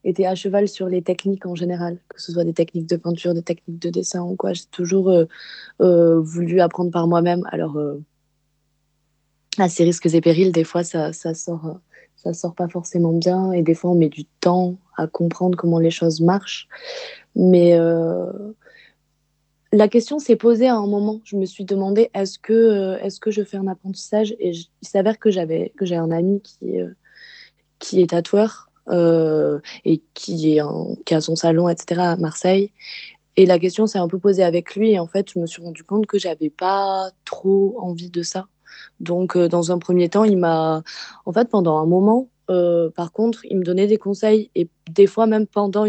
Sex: female